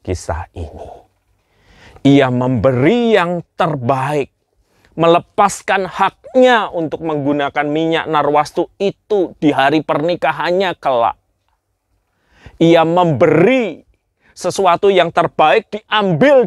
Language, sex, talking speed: Malay, male, 85 wpm